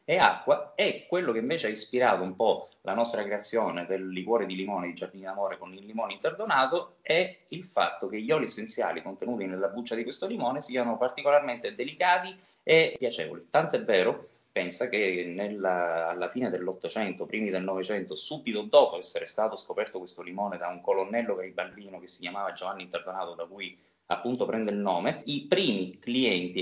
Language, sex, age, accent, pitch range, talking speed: Italian, male, 20-39, native, 95-120 Hz, 180 wpm